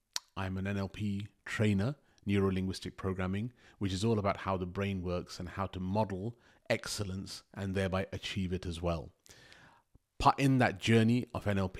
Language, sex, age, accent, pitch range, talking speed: English, male, 30-49, British, 95-105 Hz, 165 wpm